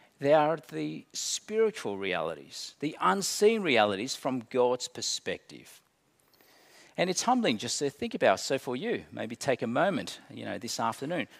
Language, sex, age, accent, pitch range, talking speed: English, male, 50-69, Australian, 115-165 Hz, 160 wpm